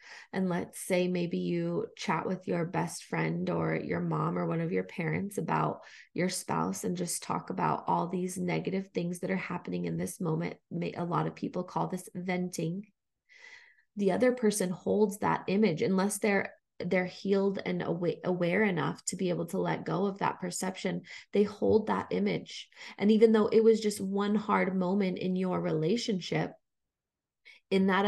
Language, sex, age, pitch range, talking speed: English, female, 20-39, 170-195 Hz, 175 wpm